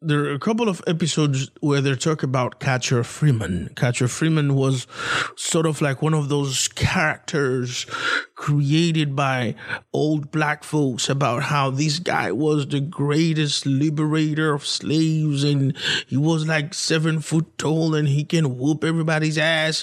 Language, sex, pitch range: English, male, 135-170 Hz